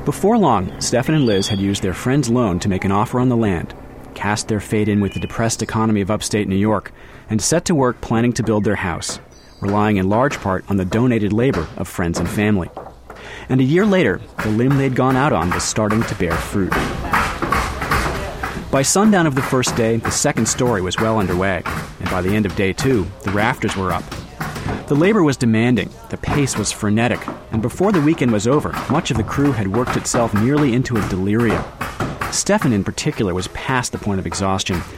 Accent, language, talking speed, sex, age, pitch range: American, English, 210 wpm, male, 30-49, 95-125 Hz